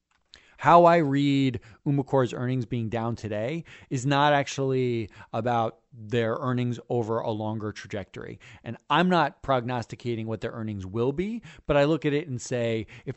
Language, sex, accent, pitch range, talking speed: English, male, American, 115-140 Hz, 160 wpm